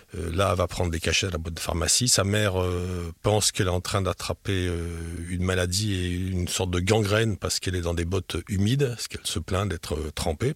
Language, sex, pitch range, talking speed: French, male, 85-110 Hz, 220 wpm